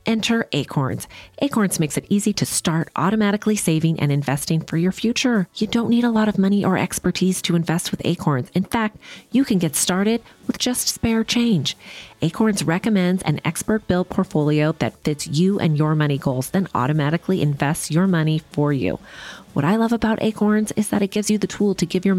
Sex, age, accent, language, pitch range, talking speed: female, 30-49, American, English, 140-195 Hz, 195 wpm